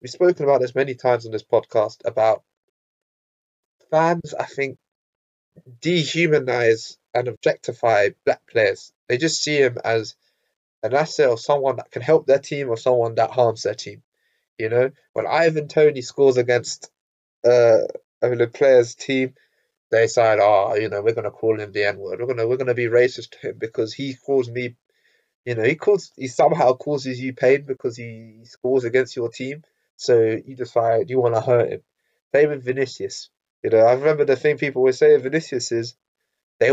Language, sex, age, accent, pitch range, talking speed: English, male, 20-39, British, 120-155 Hz, 180 wpm